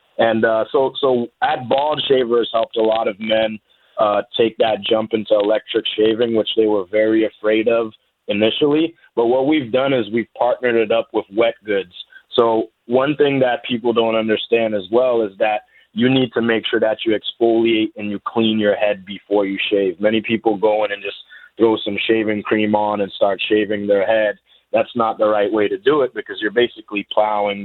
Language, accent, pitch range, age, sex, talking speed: English, American, 105-120 Hz, 20-39, male, 200 wpm